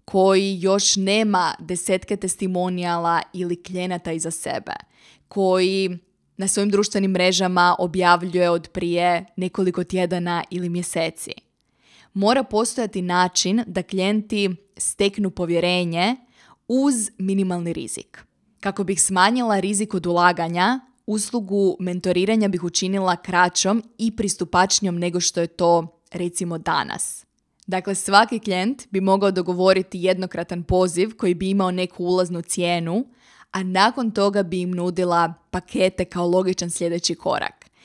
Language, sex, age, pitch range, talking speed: Croatian, female, 20-39, 175-200 Hz, 120 wpm